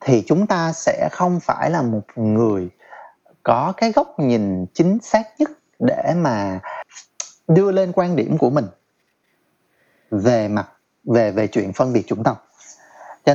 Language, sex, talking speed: Vietnamese, male, 155 wpm